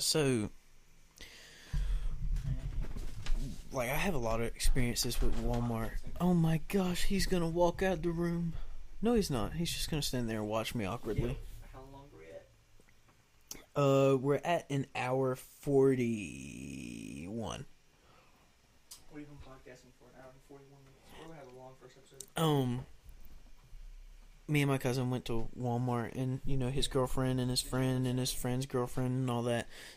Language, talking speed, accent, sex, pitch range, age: English, 165 wpm, American, male, 125-150 Hz, 20-39